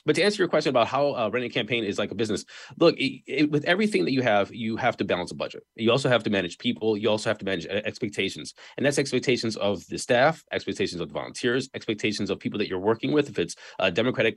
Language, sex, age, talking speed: English, male, 20-39, 250 wpm